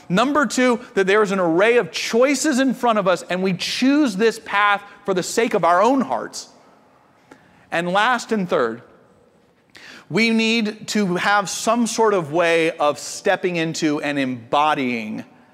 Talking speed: 160 wpm